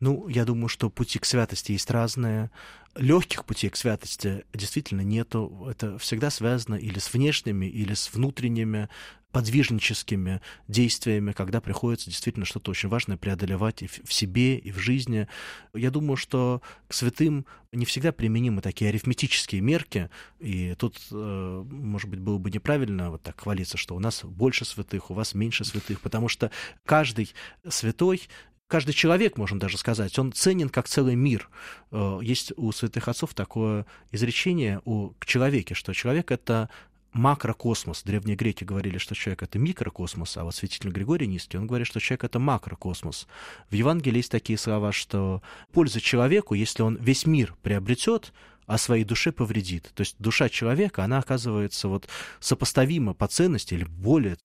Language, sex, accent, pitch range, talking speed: Russian, male, native, 100-130 Hz, 160 wpm